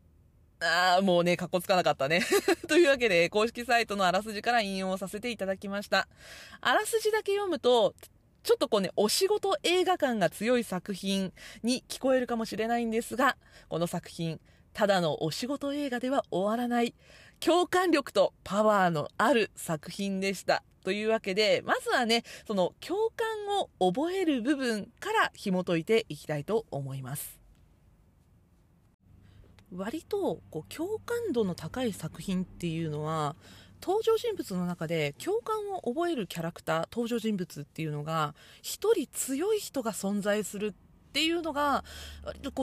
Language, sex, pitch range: Japanese, female, 170-275 Hz